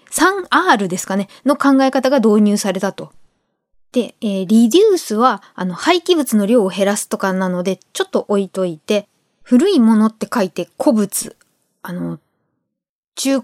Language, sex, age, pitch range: Japanese, female, 20-39, 210-280 Hz